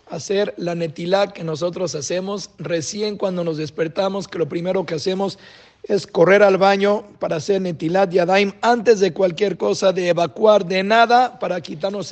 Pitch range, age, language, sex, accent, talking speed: 170-200 Hz, 50-69, Spanish, male, Mexican, 165 wpm